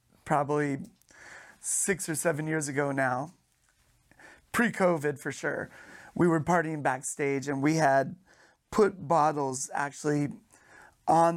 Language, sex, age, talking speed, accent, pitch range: English, male, 30-49, 110 wpm, American, 140-160 Hz